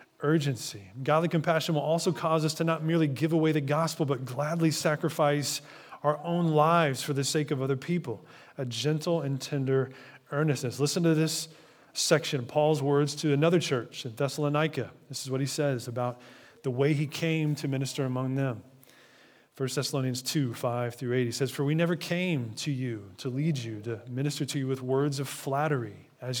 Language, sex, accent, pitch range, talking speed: English, male, American, 130-160 Hz, 190 wpm